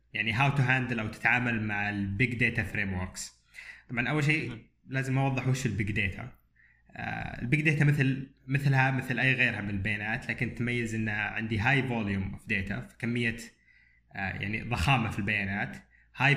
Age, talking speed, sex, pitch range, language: 20-39, 155 wpm, male, 100-130 Hz, Arabic